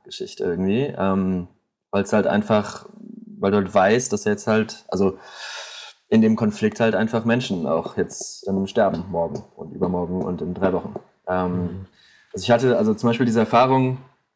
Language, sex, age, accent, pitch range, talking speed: German, male, 20-39, German, 100-135 Hz, 170 wpm